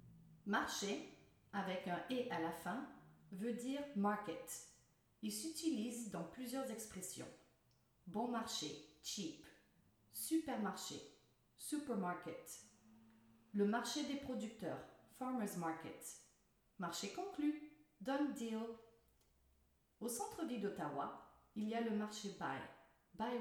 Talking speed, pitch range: 105 wpm, 180-270 Hz